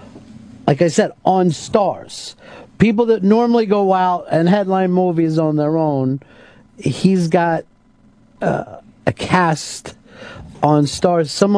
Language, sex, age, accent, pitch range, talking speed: English, male, 50-69, American, 135-175 Hz, 125 wpm